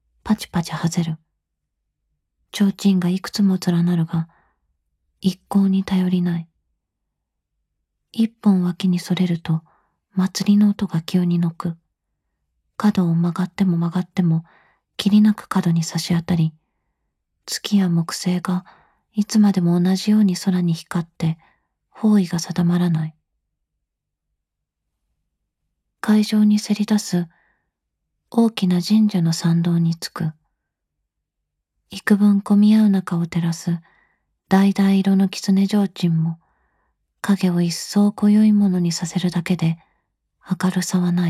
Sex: female